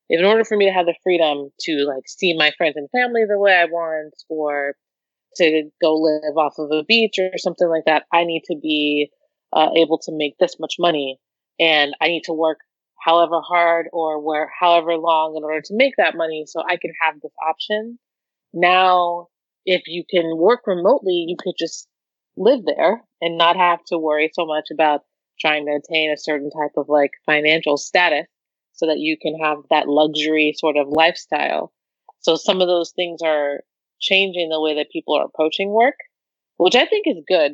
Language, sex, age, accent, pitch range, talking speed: English, female, 30-49, American, 150-170 Hz, 195 wpm